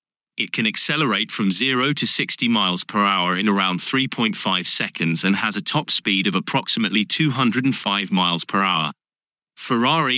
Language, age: English, 30-49